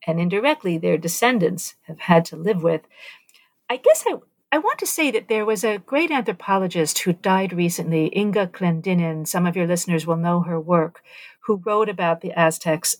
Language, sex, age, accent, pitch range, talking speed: English, female, 50-69, American, 170-220 Hz, 185 wpm